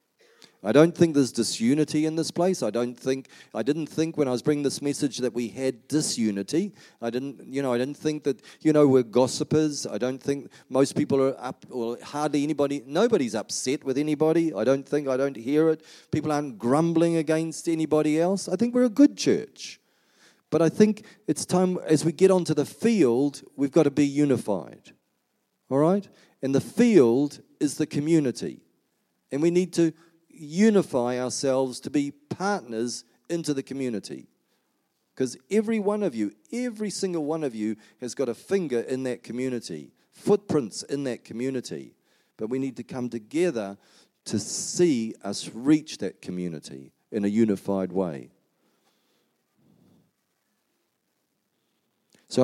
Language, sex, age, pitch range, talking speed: English, male, 40-59, 125-165 Hz, 165 wpm